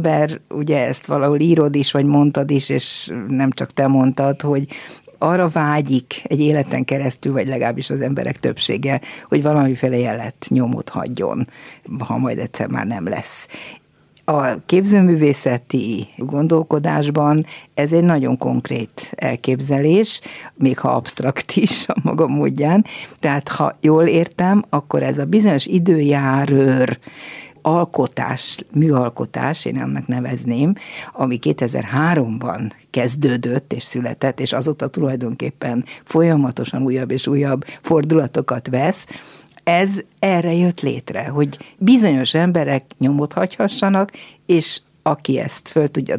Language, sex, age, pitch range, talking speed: Hungarian, female, 50-69, 130-160 Hz, 120 wpm